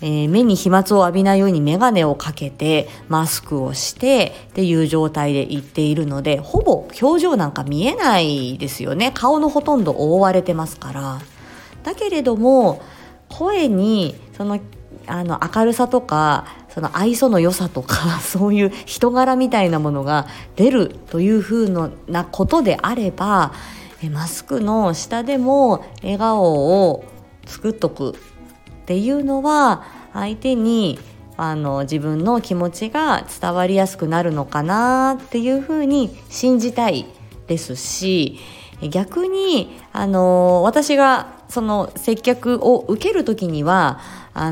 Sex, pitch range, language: female, 155-245 Hz, Japanese